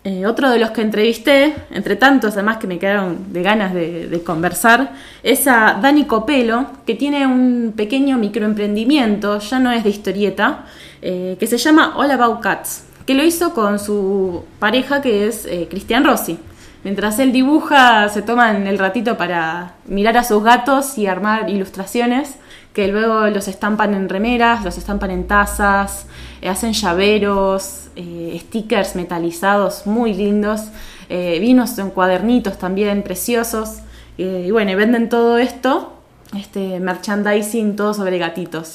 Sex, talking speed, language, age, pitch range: female, 150 wpm, Spanish, 20-39, 190-240 Hz